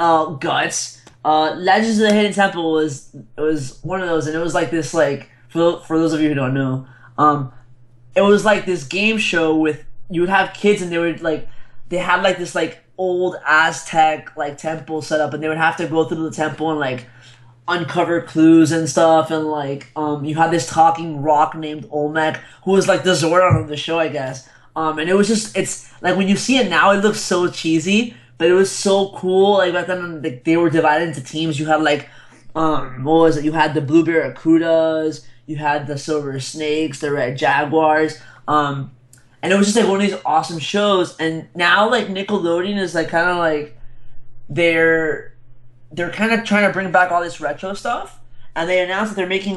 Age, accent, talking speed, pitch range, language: 20-39, American, 215 wpm, 150-180 Hz, English